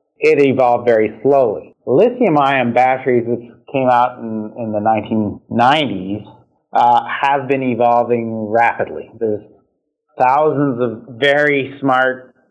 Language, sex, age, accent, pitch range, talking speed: English, male, 30-49, American, 110-130 Hz, 110 wpm